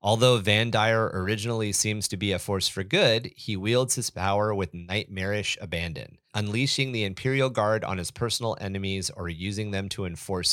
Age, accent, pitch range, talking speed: 30-49, American, 95-120 Hz, 175 wpm